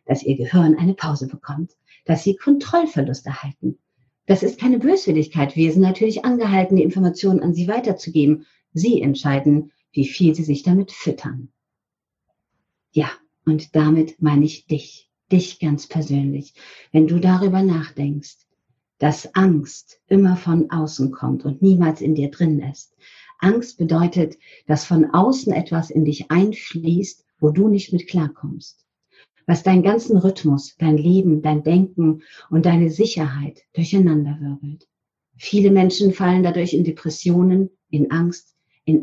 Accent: German